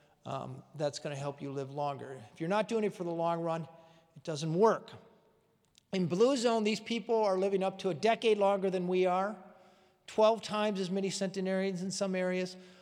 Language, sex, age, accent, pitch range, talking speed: English, male, 40-59, American, 175-210 Hz, 200 wpm